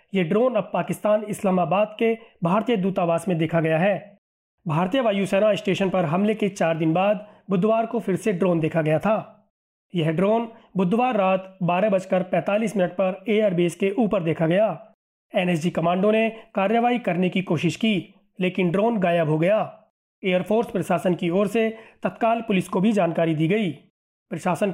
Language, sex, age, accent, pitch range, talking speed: Hindi, male, 30-49, native, 180-220 Hz, 170 wpm